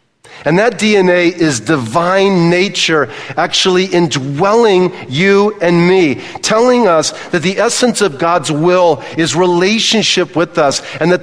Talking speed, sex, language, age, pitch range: 135 wpm, male, English, 50-69, 165-200 Hz